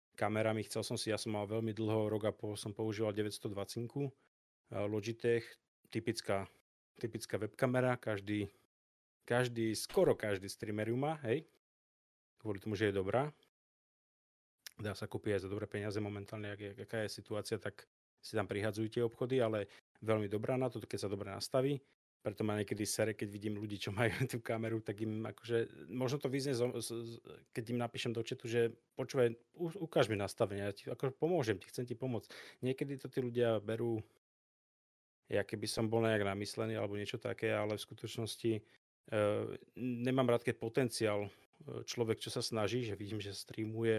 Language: Czech